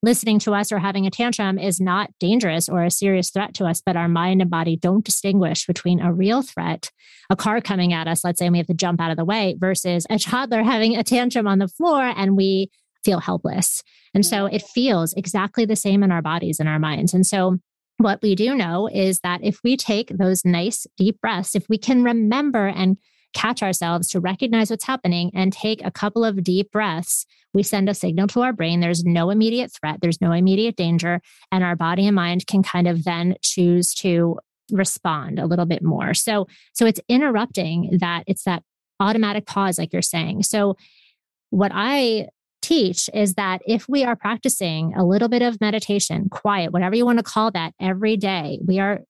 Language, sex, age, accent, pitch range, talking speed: English, female, 30-49, American, 175-215 Hz, 210 wpm